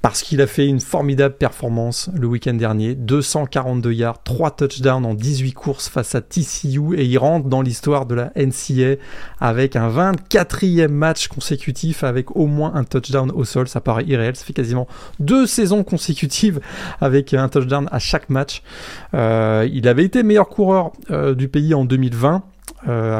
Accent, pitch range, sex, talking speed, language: French, 125-155 Hz, male, 175 wpm, French